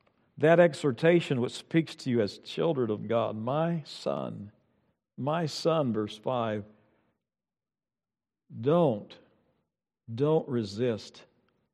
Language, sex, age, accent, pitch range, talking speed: English, male, 60-79, American, 115-150 Hz, 95 wpm